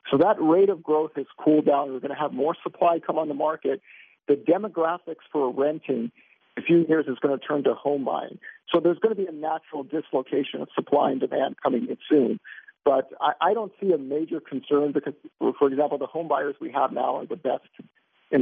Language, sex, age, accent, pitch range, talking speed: English, male, 50-69, American, 140-165 Hz, 215 wpm